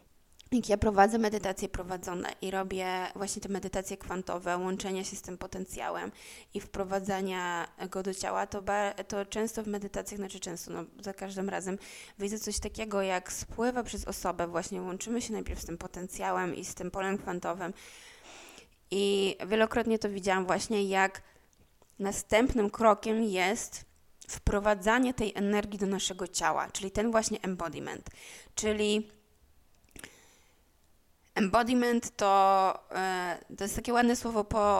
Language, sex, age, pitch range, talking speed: Polish, female, 20-39, 190-220 Hz, 140 wpm